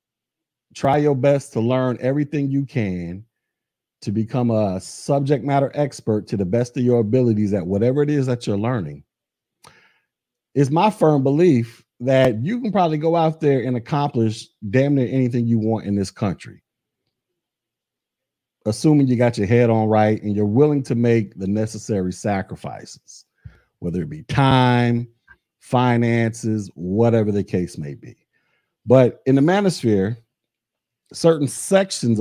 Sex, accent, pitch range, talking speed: male, American, 100-130 Hz, 145 wpm